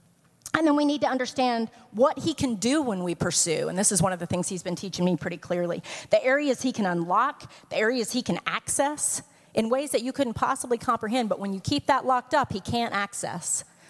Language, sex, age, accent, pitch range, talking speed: English, female, 40-59, American, 195-285 Hz, 230 wpm